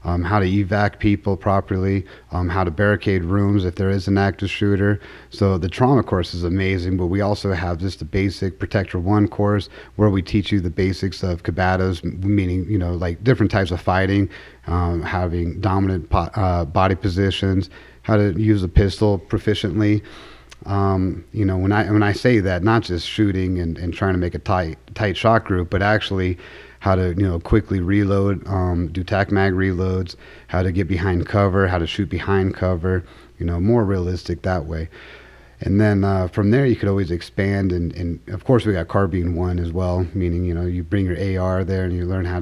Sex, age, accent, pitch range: male, 30-49, American, 90-100 Hz